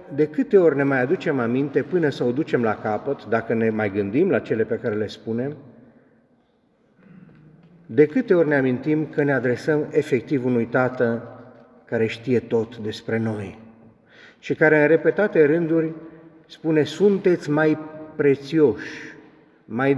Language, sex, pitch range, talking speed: Romanian, male, 120-165 Hz, 145 wpm